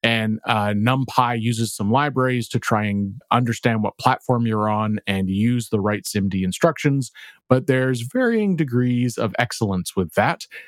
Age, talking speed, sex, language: 30-49, 155 wpm, male, English